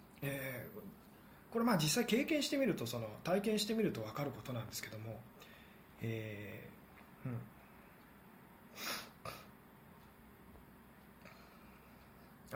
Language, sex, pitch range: Japanese, male, 135-185 Hz